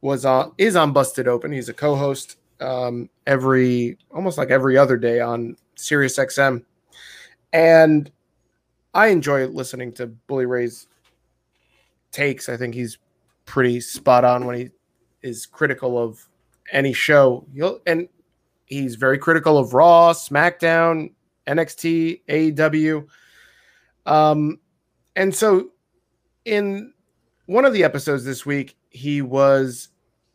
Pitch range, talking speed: 130-170 Hz, 125 wpm